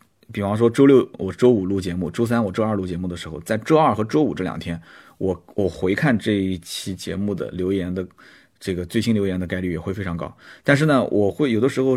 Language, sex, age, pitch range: Chinese, male, 30-49, 95-125 Hz